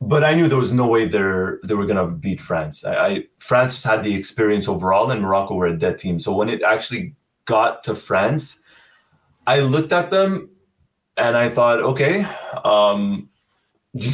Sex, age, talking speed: male, 20-39, 175 wpm